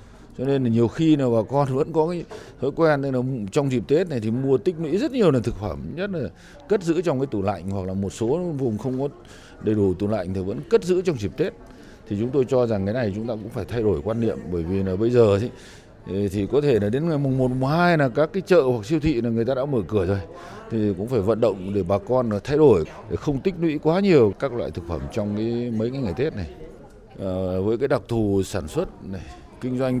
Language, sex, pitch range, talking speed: Vietnamese, male, 95-130 Hz, 270 wpm